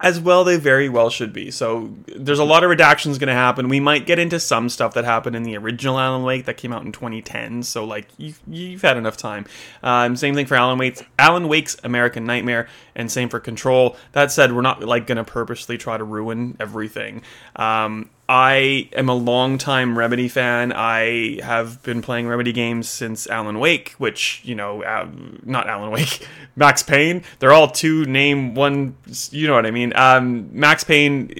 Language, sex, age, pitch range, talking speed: English, male, 30-49, 115-135 Hz, 200 wpm